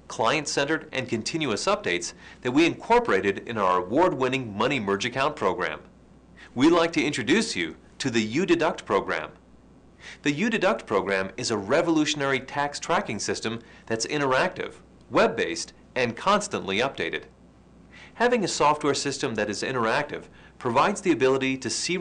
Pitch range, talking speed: 110-150 Hz, 145 wpm